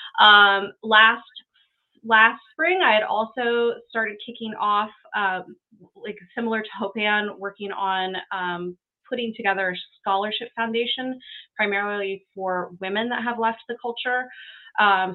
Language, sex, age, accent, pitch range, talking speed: English, female, 20-39, American, 180-225 Hz, 125 wpm